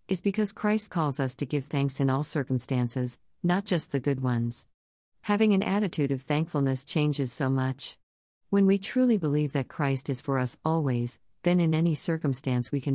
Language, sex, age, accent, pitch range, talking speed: English, female, 50-69, American, 130-160 Hz, 185 wpm